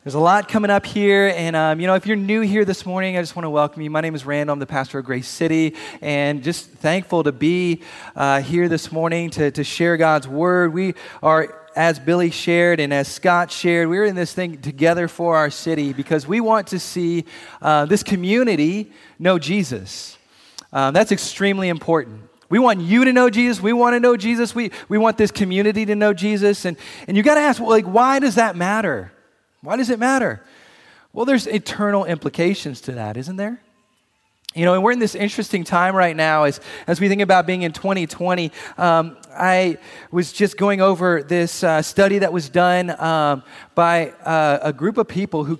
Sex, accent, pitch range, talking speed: male, American, 160-205 Hz, 205 wpm